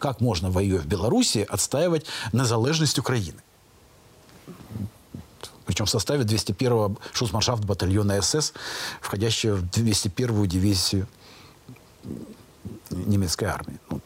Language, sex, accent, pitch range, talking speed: Russian, male, native, 100-135 Hz, 90 wpm